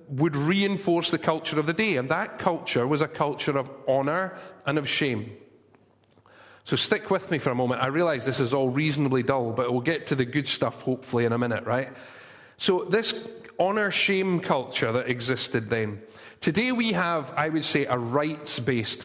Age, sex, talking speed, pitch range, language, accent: 30-49, male, 185 wpm, 130-180 Hz, English, British